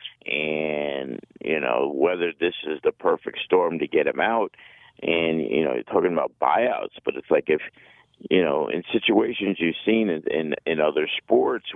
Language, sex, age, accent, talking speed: English, male, 50-69, American, 180 wpm